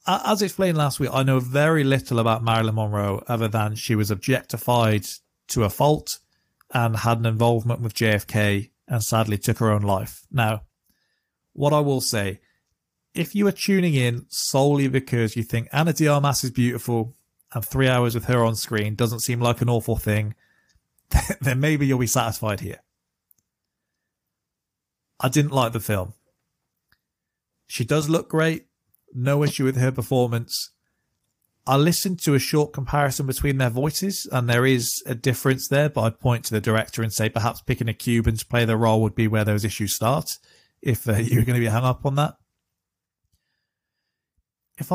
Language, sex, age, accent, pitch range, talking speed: English, male, 40-59, British, 110-140 Hz, 175 wpm